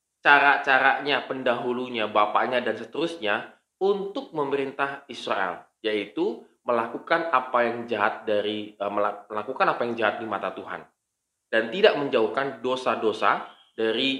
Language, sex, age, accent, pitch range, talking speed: Indonesian, male, 20-39, native, 105-145 Hz, 110 wpm